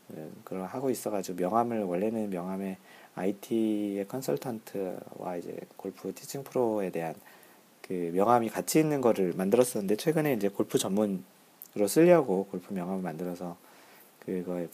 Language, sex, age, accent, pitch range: Korean, male, 40-59, native, 90-120 Hz